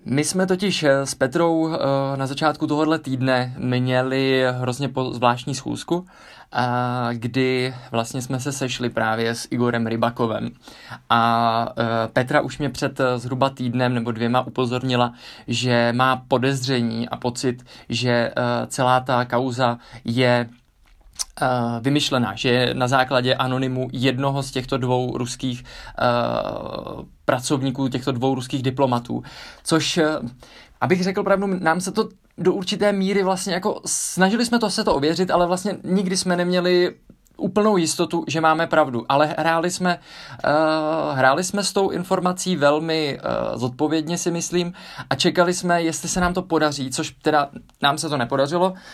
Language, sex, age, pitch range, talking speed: Czech, male, 20-39, 125-165 Hz, 140 wpm